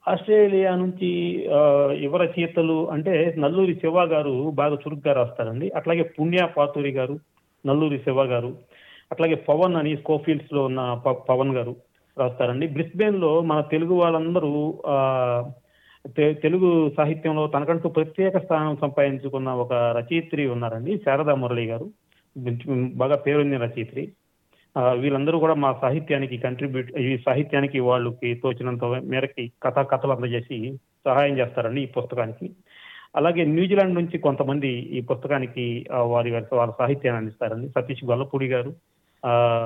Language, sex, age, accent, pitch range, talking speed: Telugu, male, 40-59, native, 125-160 Hz, 120 wpm